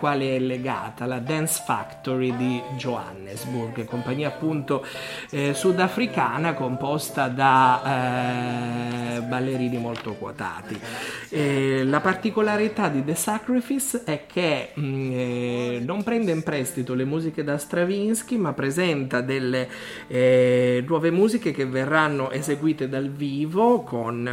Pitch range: 125-170 Hz